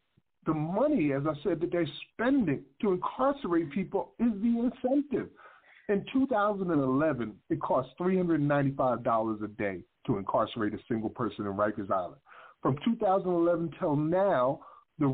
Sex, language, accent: male, English, American